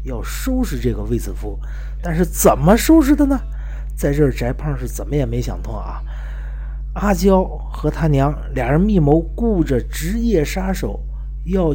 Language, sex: Chinese, male